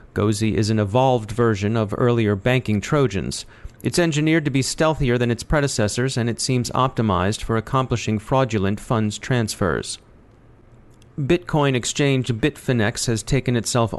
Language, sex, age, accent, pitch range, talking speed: English, male, 40-59, American, 110-125 Hz, 135 wpm